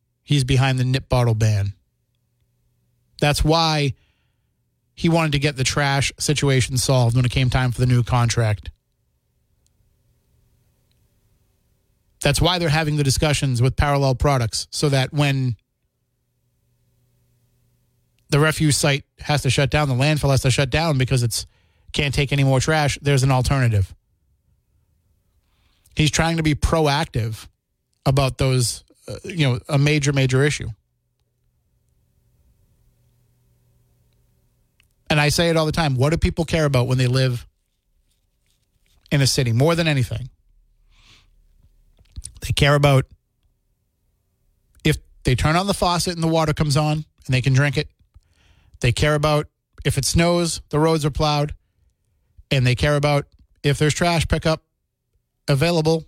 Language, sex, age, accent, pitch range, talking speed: English, male, 30-49, American, 110-145 Hz, 140 wpm